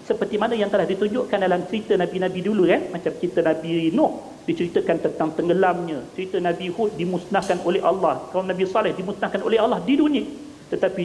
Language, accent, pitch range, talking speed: Malayalam, Indonesian, 160-210 Hz, 175 wpm